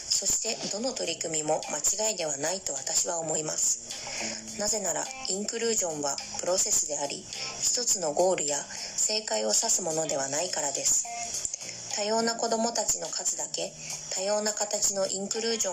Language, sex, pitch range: Japanese, female, 165-215 Hz